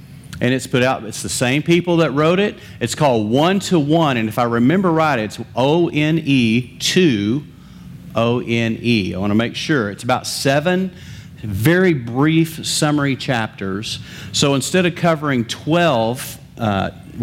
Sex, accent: male, American